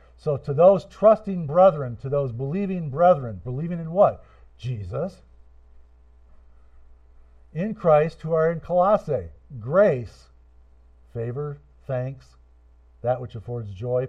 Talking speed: 110 wpm